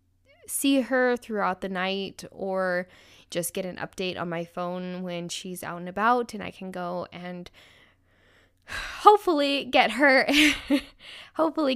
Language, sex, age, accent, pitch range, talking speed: English, female, 10-29, American, 175-245 Hz, 140 wpm